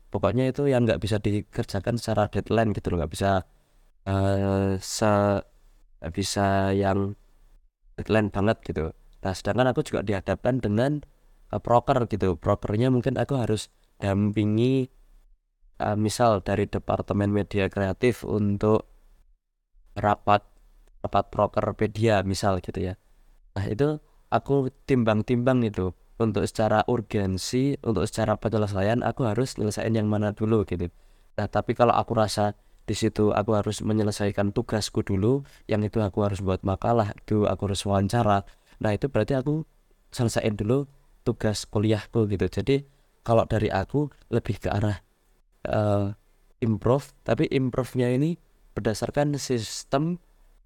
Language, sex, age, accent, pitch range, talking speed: Indonesian, male, 20-39, native, 100-120 Hz, 130 wpm